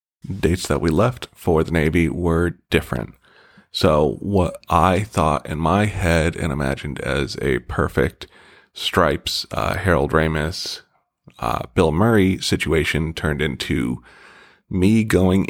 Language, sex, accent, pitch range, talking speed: English, male, American, 80-100 Hz, 130 wpm